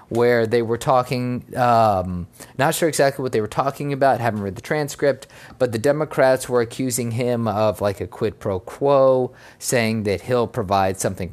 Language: English